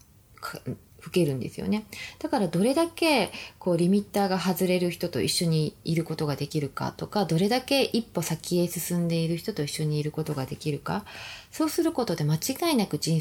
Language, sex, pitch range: Japanese, female, 145-205 Hz